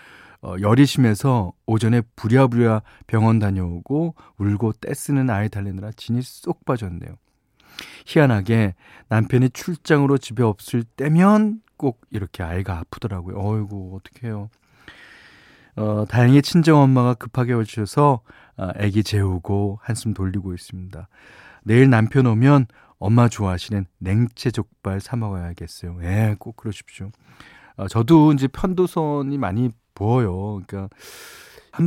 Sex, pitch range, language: male, 100-135 Hz, Korean